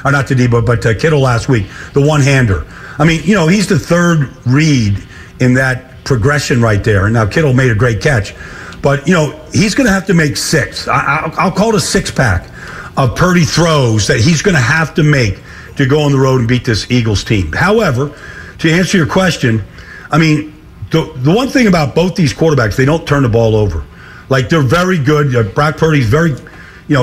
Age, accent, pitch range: 50-69, American, 120-160 Hz